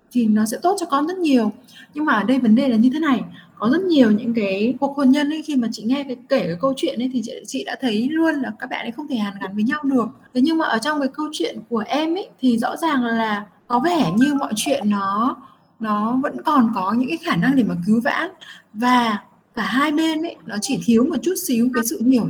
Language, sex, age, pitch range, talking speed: Vietnamese, female, 20-39, 220-275 Hz, 270 wpm